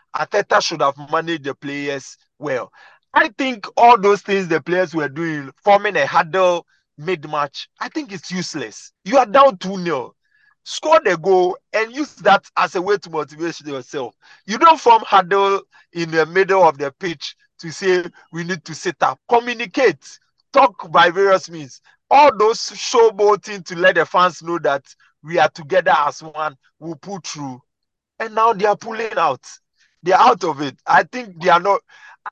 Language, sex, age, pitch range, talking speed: English, male, 40-59, 155-210 Hz, 175 wpm